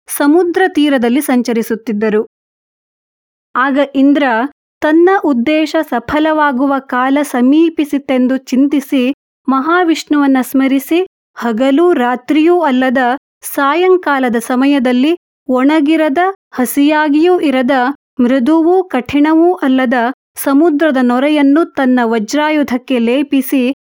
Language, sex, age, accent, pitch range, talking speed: Kannada, female, 30-49, native, 250-300 Hz, 75 wpm